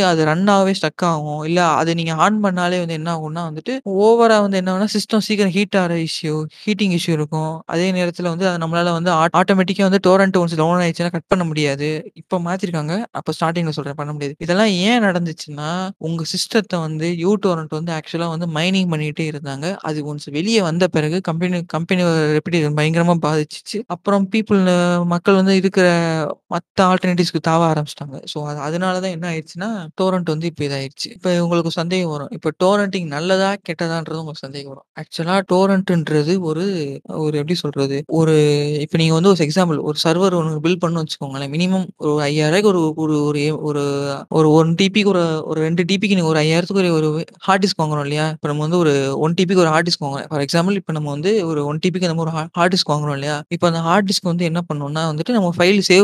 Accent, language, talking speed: native, Tamil, 65 wpm